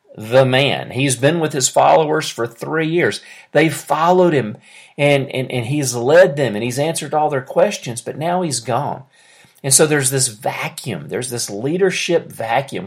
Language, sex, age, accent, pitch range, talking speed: English, male, 40-59, American, 125-170 Hz, 175 wpm